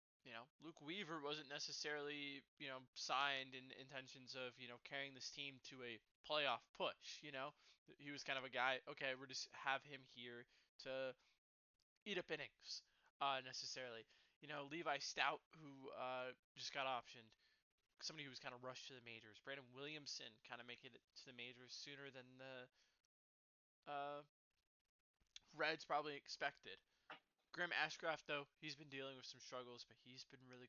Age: 20-39